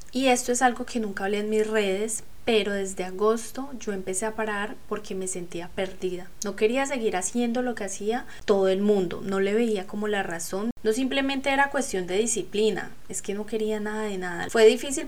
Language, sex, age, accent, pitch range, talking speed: Spanish, female, 10-29, Colombian, 190-225 Hz, 205 wpm